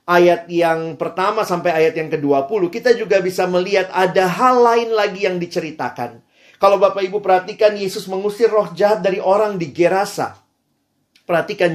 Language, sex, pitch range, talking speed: Indonesian, male, 155-210 Hz, 155 wpm